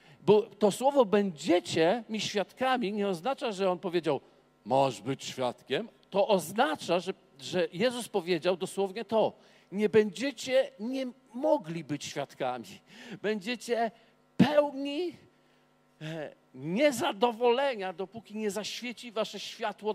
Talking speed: 110 wpm